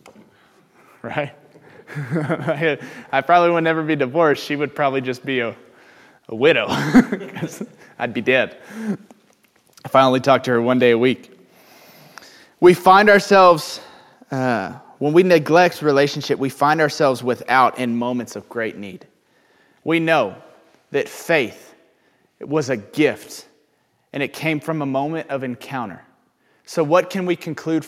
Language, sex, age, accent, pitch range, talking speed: English, male, 20-39, American, 130-175 Hz, 140 wpm